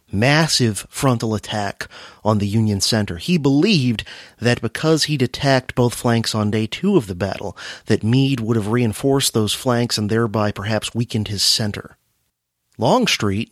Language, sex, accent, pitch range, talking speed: English, male, American, 105-140 Hz, 155 wpm